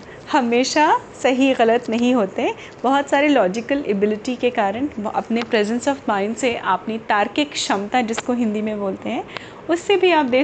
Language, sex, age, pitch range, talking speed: Hindi, female, 30-49, 225-295 Hz, 160 wpm